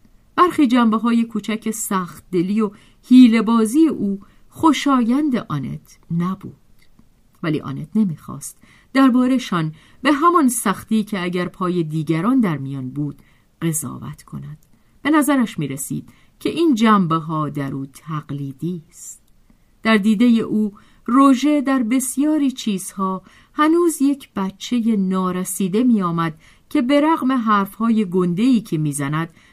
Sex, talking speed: female, 120 wpm